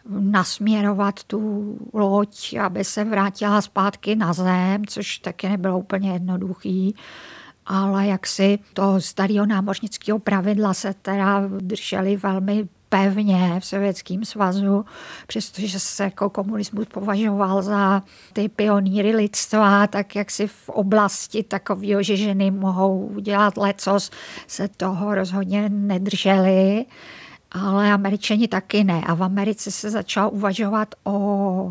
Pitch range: 195-210 Hz